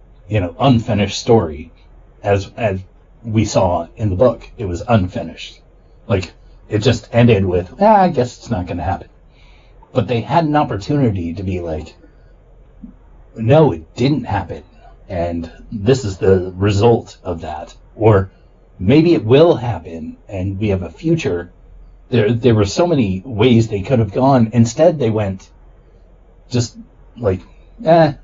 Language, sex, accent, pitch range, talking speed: English, male, American, 95-125 Hz, 150 wpm